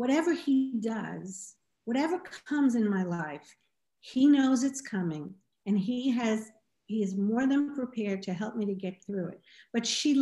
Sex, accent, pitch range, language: female, American, 190-260 Hz, English